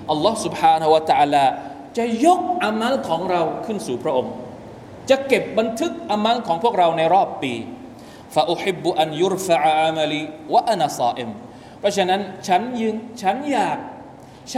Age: 20-39